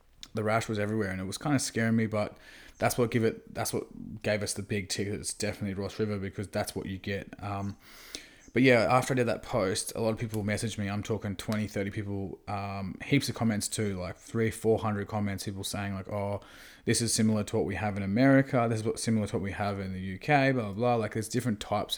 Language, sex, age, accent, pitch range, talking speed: English, male, 20-39, Australian, 100-115 Hz, 245 wpm